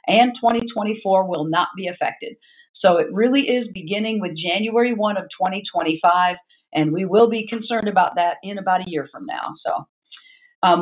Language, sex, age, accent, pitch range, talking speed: English, female, 50-69, American, 195-240 Hz, 170 wpm